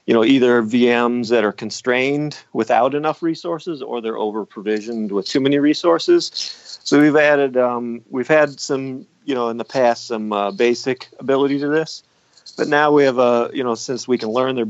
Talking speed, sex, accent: 190 wpm, male, American